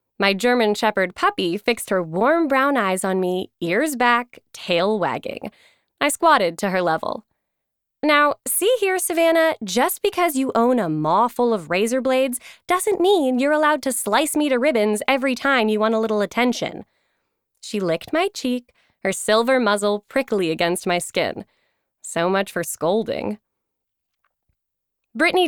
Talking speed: 155 wpm